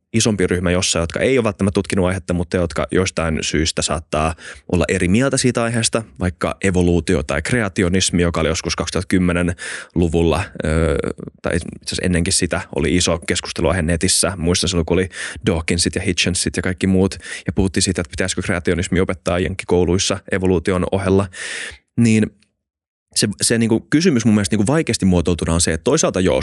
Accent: native